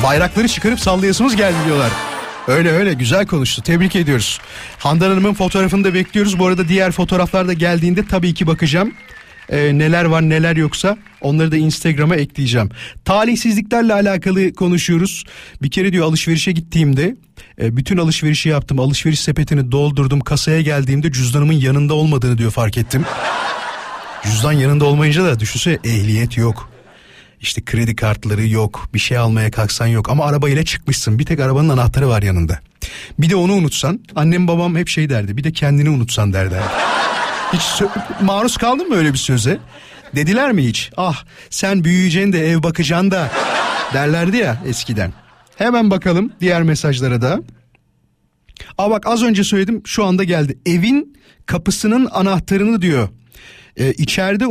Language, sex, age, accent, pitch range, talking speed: Turkish, male, 40-59, native, 130-190 Hz, 150 wpm